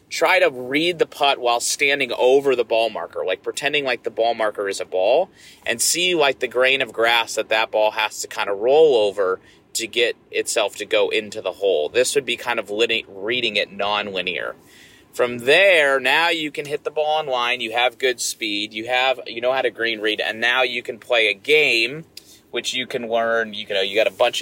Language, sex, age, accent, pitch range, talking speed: English, male, 30-49, American, 110-175 Hz, 225 wpm